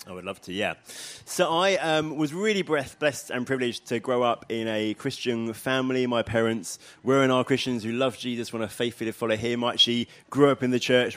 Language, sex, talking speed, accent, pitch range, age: English, male, 220 wpm, British, 110-135 Hz, 20-39